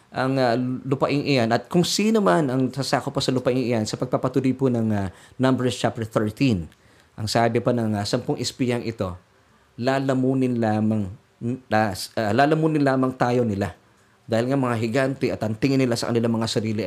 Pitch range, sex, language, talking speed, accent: 110-145 Hz, male, Filipino, 185 wpm, native